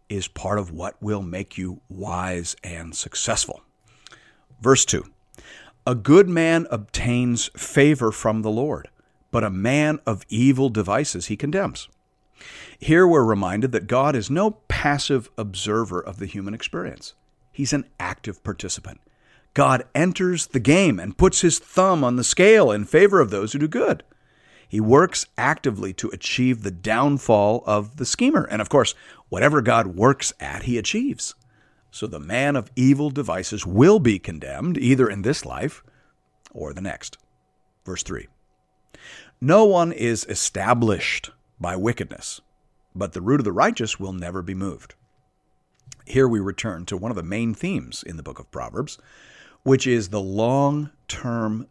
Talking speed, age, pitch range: 155 wpm, 50-69, 100-140 Hz